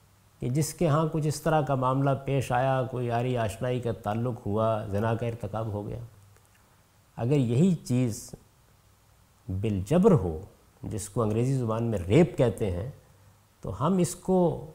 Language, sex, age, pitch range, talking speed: Urdu, male, 50-69, 100-150 Hz, 160 wpm